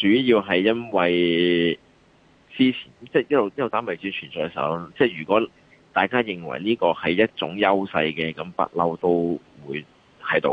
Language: Chinese